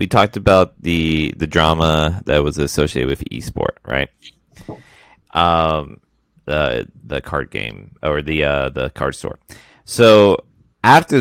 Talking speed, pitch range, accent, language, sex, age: 135 wpm, 75-100 Hz, American, English, male, 30-49